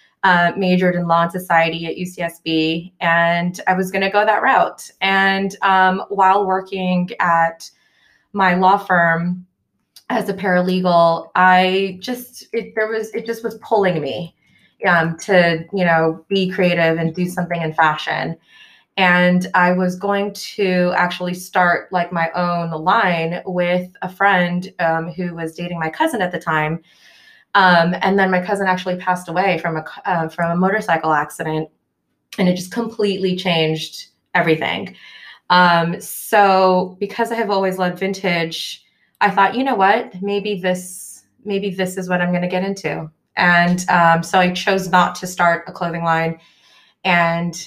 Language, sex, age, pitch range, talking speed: English, female, 20-39, 170-195 Hz, 160 wpm